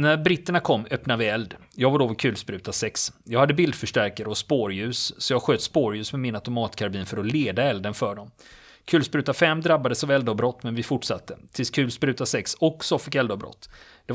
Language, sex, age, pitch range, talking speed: Swedish, male, 30-49, 110-145 Hz, 190 wpm